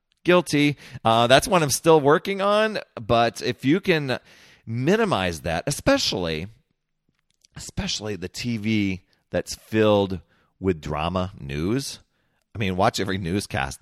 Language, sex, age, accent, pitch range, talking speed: English, male, 30-49, American, 90-125 Hz, 120 wpm